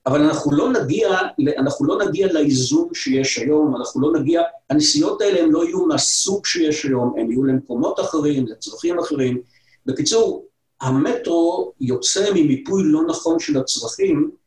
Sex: male